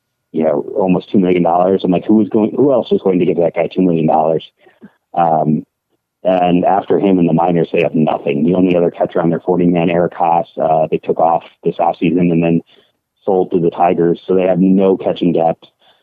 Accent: American